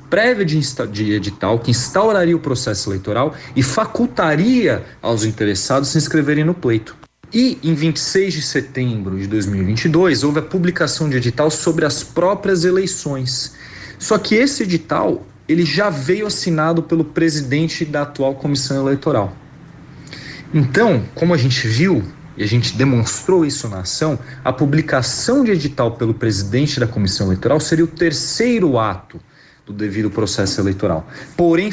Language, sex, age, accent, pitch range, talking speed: Portuguese, male, 40-59, Brazilian, 115-160 Hz, 145 wpm